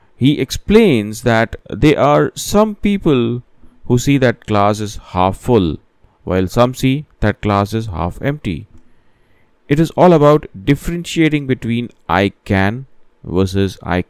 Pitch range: 100-130 Hz